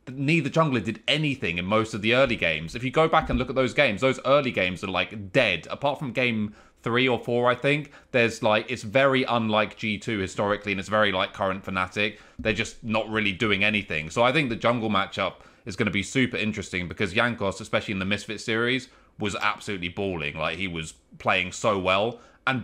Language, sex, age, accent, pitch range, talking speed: English, male, 30-49, British, 100-125 Hz, 215 wpm